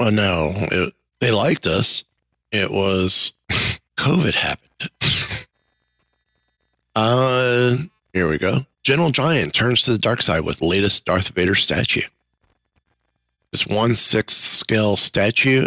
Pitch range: 90-115 Hz